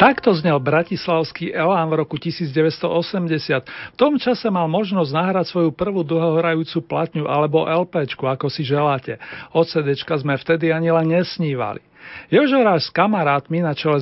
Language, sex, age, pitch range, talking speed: Slovak, male, 40-59, 150-180 Hz, 145 wpm